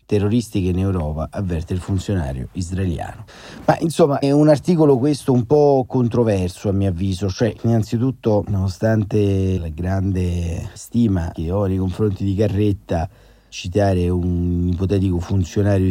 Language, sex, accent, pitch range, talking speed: Italian, male, native, 90-105 Hz, 130 wpm